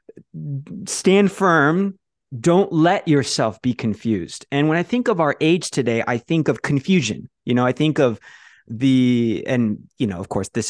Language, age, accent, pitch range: English, 20-39, American, 115-150 Hz